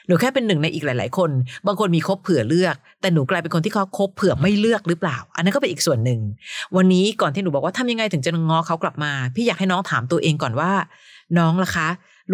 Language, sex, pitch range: Thai, female, 150-190 Hz